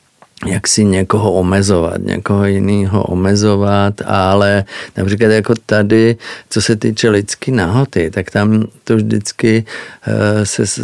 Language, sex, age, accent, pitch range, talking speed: Czech, male, 40-59, native, 95-110 Hz, 115 wpm